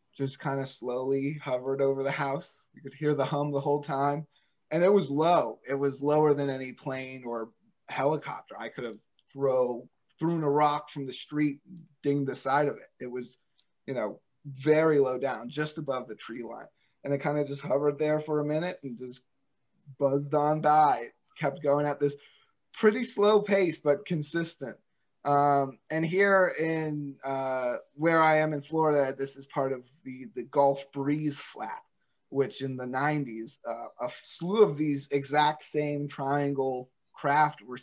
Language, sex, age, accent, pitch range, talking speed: English, male, 20-39, American, 135-155 Hz, 180 wpm